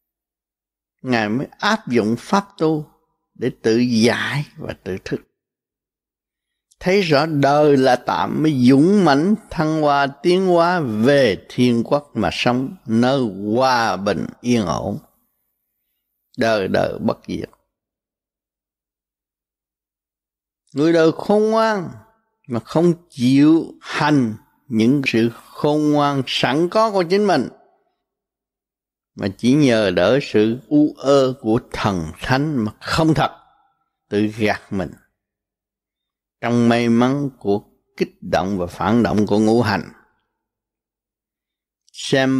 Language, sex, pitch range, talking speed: Vietnamese, male, 110-160 Hz, 120 wpm